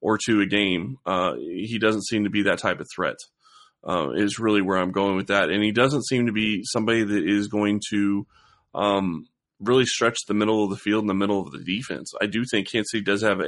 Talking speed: 240 wpm